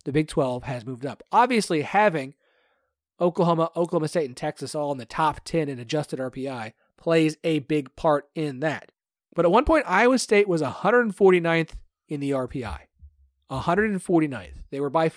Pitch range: 130-175 Hz